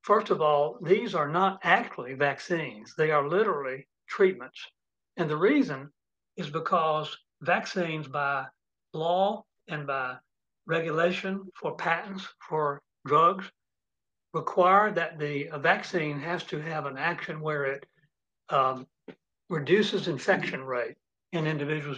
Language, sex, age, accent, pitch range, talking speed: English, male, 60-79, American, 145-180 Hz, 120 wpm